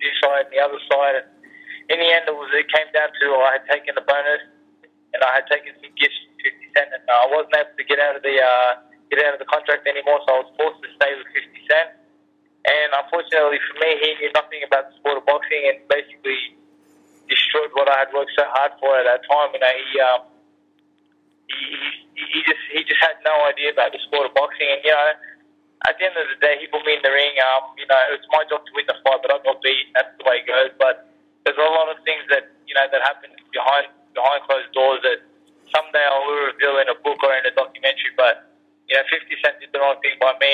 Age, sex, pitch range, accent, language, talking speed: 20-39, male, 135-160 Hz, Australian, English, 250 wpm